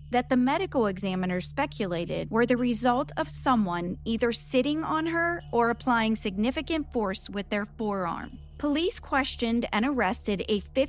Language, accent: English, American